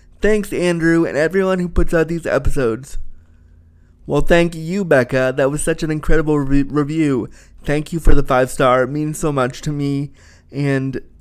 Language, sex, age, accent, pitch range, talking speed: English, male, 20-39, American, 135-170 Hz, 165 wpm